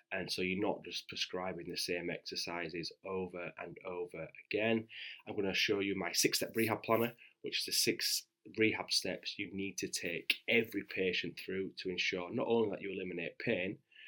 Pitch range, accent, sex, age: 90-110 Hz, British, male, 20-39